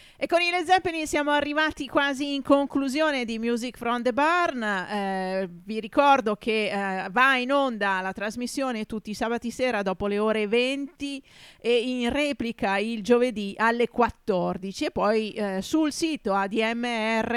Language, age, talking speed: Italian, 40-59, 160 wpm